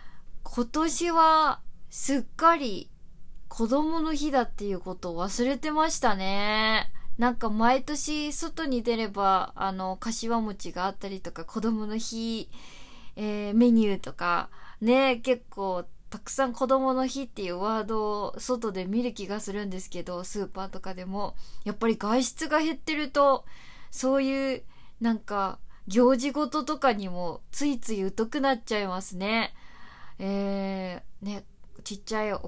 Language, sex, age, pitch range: Japanese, female, 20-39, 200-270 Hz